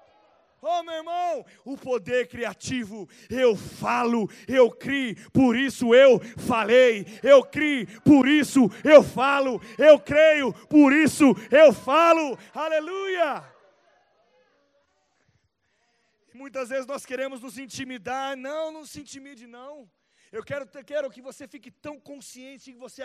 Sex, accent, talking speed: male, Brazilian, 125 wpm